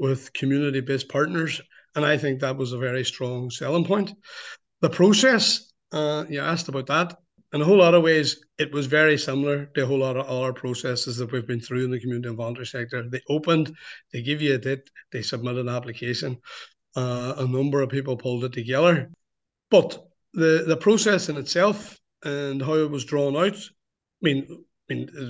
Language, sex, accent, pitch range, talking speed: English, male, Irish, 130-160 Hz, 195 wpm